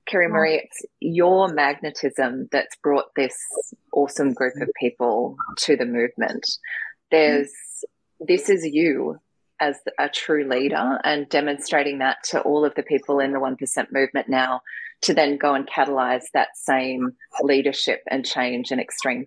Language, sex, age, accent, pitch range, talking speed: English, female, 20-39, Australian, 135-160 Hz, 150 wpm